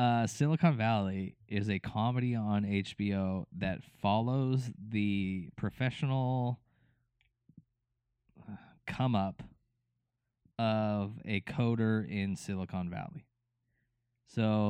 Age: 20-39